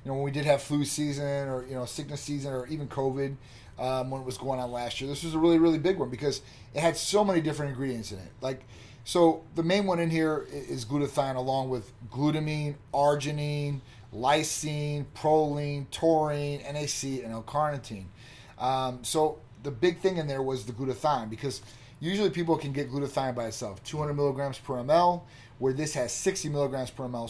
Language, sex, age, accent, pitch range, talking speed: English, male, 30-49, American, 125-155 Hz, 190 wpm